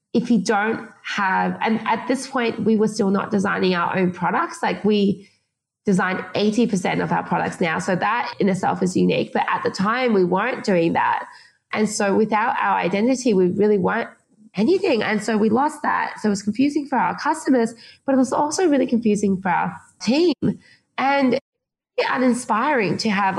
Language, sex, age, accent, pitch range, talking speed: English, female, 20-39, Australian, 200-250 Hz, 185 wpm